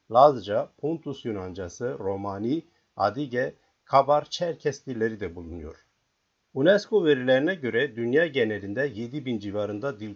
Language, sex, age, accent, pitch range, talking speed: Turkish, male, 50-69, native, 100-145 Hz, 105 wpm